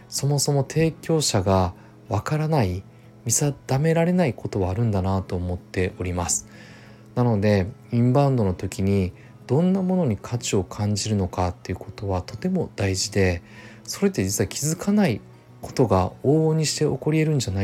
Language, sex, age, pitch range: Japanese, male, 20-39, 100-130 Hz